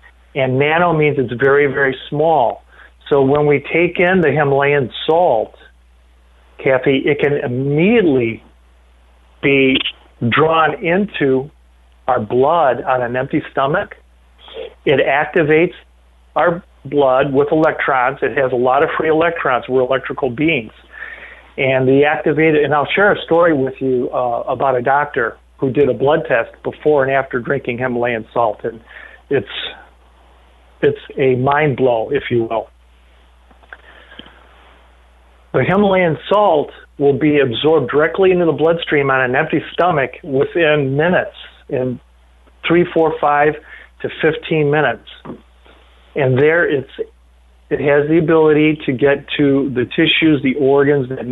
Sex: male